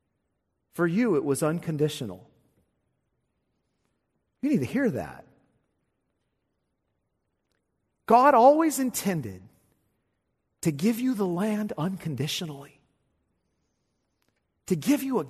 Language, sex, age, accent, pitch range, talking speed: English, male, 40-59, American, 125-210 Hz, 90 wpm